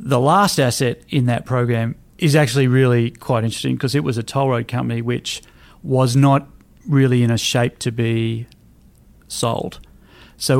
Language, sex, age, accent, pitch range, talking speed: English, male, 40-59, Australian, 120-140 Hz, 165 wpm